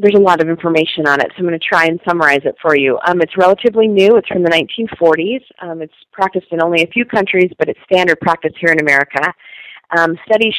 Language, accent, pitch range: English, American, 155-185 Hz